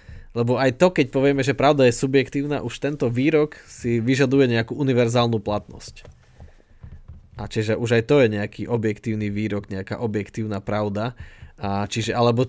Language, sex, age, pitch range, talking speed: Slovak, male, 20-39, 115-135 Hz, 155 wpm